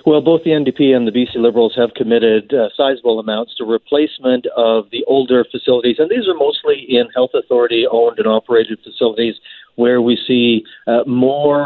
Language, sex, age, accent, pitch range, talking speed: English, male, 50-69, American, 115-135 Hz, 175 wpm